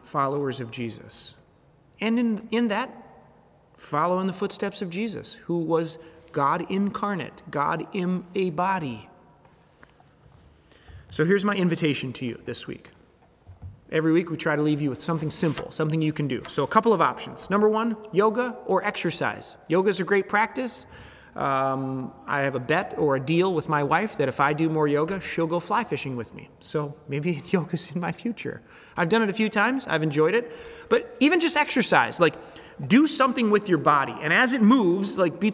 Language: English